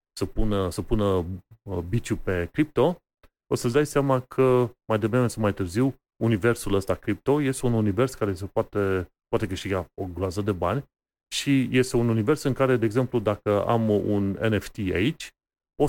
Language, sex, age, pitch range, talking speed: Romanian, male, 30-49, 100-130 Hz, 175 wpm